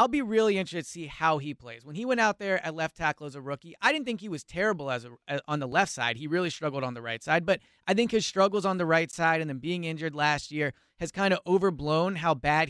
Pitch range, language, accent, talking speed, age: 145-185 Hz, English, American, 285 wpm, 30-49